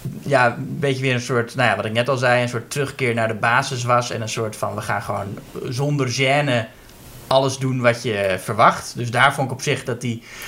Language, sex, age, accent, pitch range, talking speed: Dutch, male, 20-39, Dutch, 120-145 Hz, 240 wpm